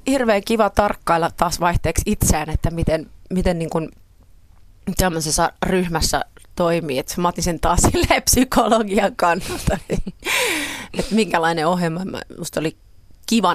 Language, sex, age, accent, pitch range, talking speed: Finnish, female, 30-49, native, 150-180 Hz, 120 wpm